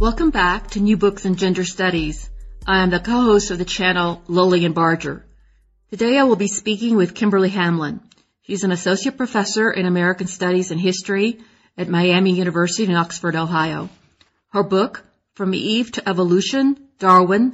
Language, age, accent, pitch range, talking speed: English, 40-59, American, 180-215 Hz, 170 wpm